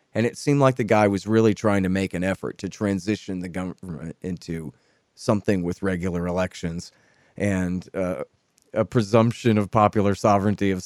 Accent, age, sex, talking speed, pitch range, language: American, 40-59, male, 165 wpm, 95-115 Hz, English